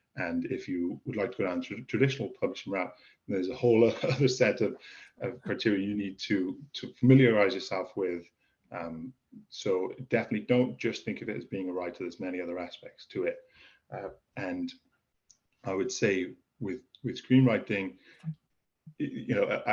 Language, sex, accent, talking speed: English, male, British, 170 wpm